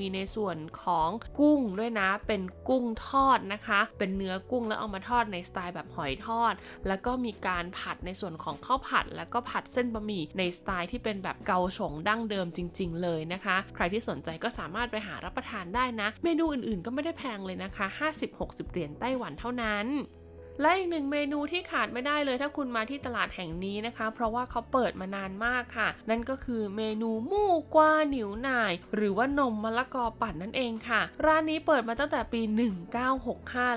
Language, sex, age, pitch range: Thai, female, 20-39, 190-245 Hz